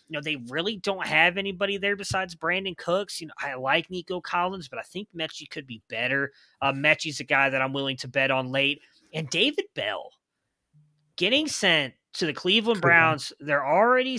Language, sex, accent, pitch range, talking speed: English, male, American, 140-180 Hz, 195 wpm